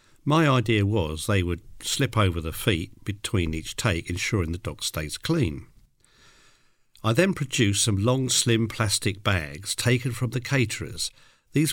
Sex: male